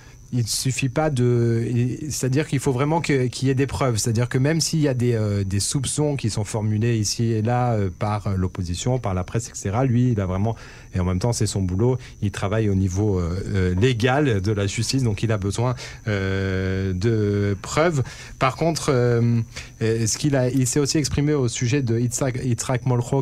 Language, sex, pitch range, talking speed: Hebrew, male, 105-130 Hz, 210 wpm